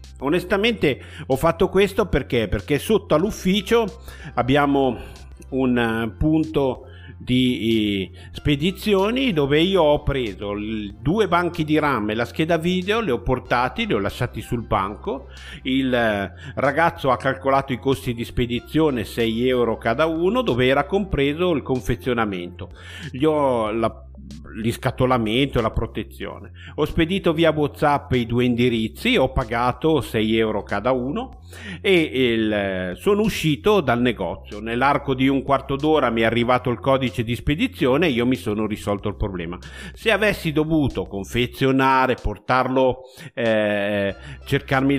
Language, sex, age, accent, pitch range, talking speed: Italian, male, 50-69, native, 110-145 Hz, 130 wpm